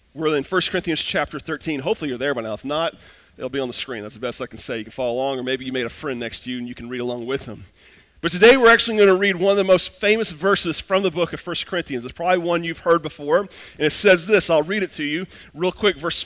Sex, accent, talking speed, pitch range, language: male, American, 300 wpm, 125-185 Hz, English